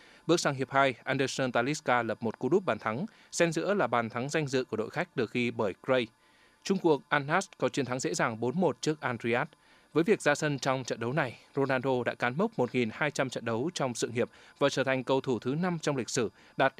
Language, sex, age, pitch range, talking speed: Vietnamese, male, 20-39, 125-150 Hz, 235 wpm